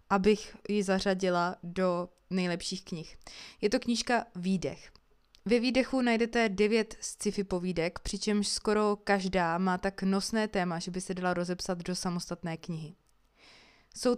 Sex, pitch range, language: female, 180-205 Hz, Czech